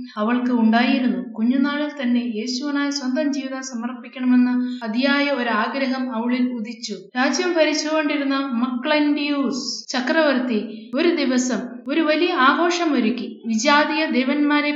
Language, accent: Malayalam, native